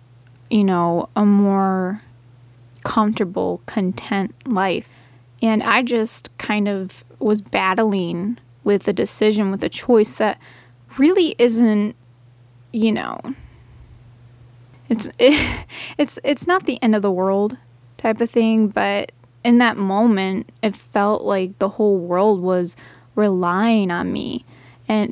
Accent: American